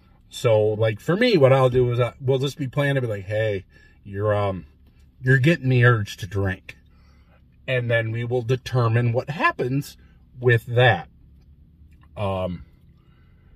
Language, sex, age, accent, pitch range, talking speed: English, male, 40-59, American, 95-125 Hz, 150 wpm